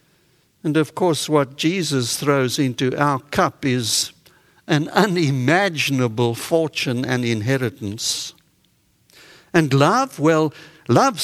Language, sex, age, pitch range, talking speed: English, male, 60-79, 135-195 Hz, 100 wpm